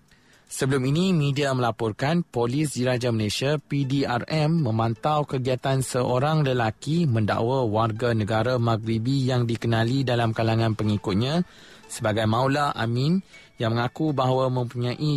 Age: 30-49